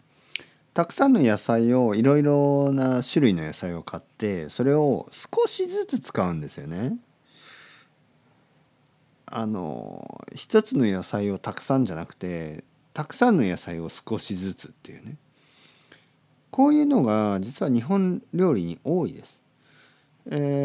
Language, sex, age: Japanese, male, 40-59